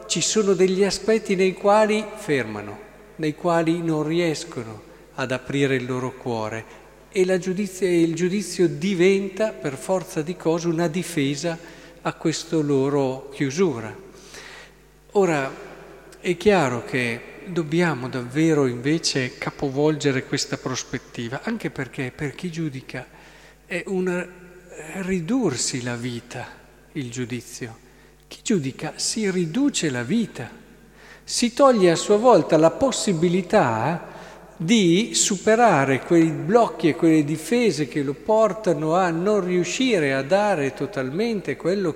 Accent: native